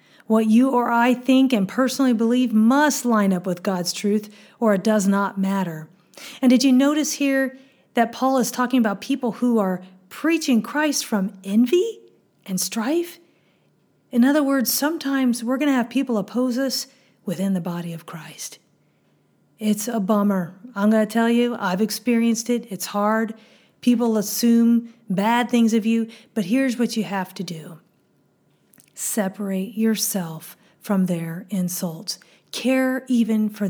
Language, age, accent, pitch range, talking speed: English, 40-59, American, 195-250 Hz, 155 wpm